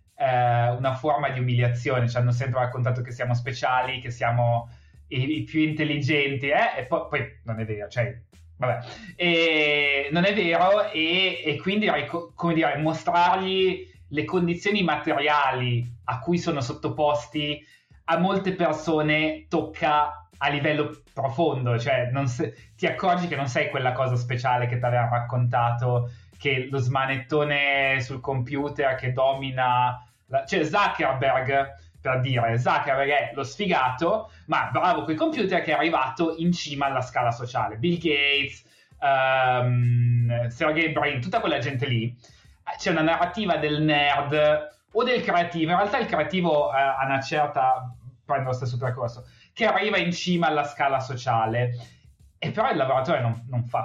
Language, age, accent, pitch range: Italian, 20-39, native, 125-155 Hz